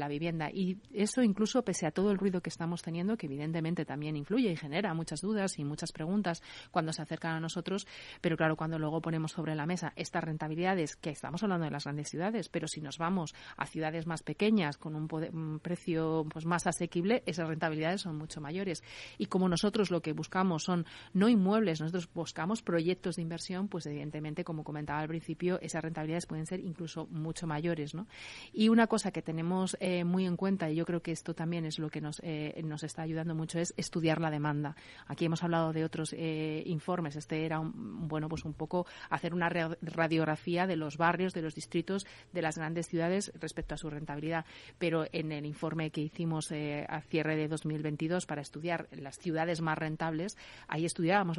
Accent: Spanish